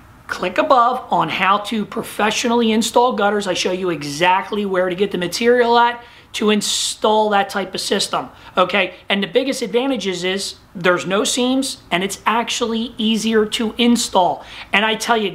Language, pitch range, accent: English, 185-240 Hz, American